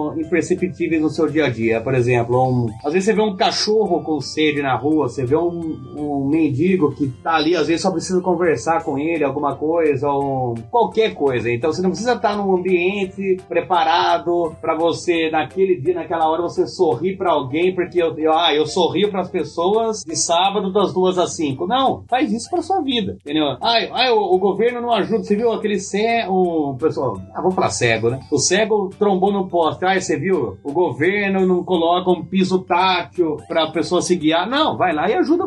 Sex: male